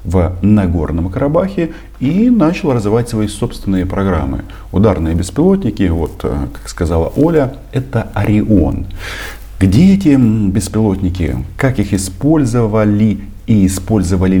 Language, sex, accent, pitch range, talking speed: Russian, male, native, 90-105 Hz, 105 wpm